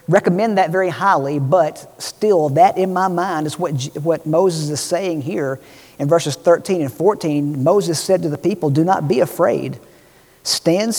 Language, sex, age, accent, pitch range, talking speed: English, male, 50-69, American, 135-165 Hz, 175 wpm